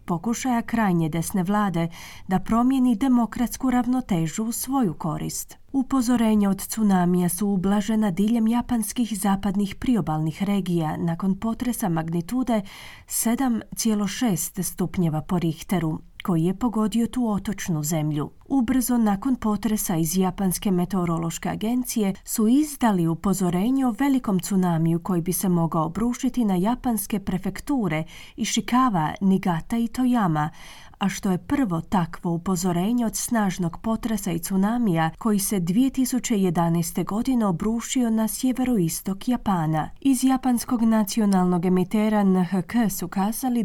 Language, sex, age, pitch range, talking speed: Croatian, female, 30-49, 175-230 Hz, 120 wpm